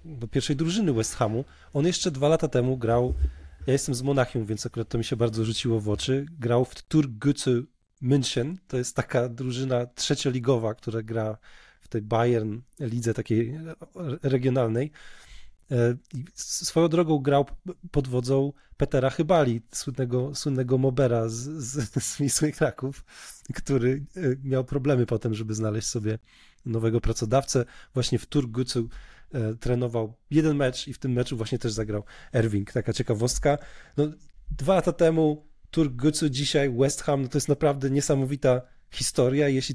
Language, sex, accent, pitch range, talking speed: Polish, male, native, 120-150 Hz, 145 wpm